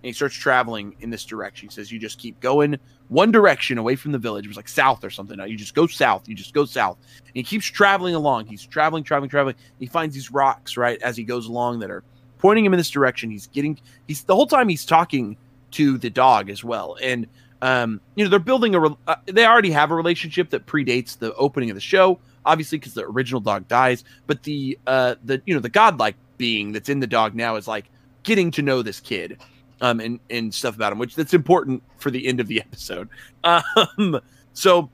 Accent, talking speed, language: American, 235 wpm, English